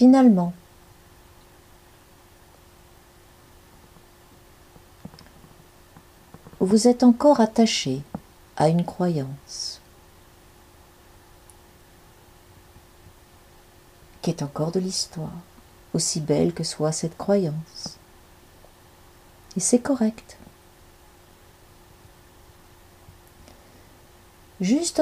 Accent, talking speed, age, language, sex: French, 55 wpm, 50-69, French, female